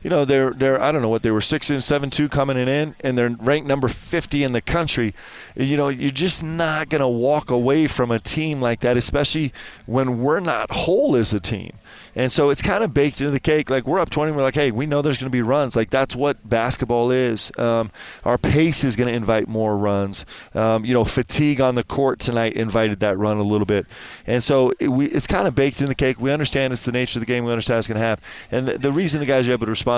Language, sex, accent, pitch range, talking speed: English, male, American, 115-140 Hz, 265 wpm